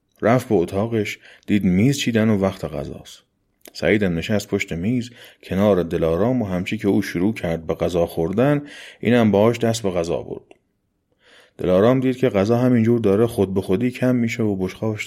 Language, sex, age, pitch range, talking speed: Persian, male, 30-49, 90-120 Hz, 170 wpm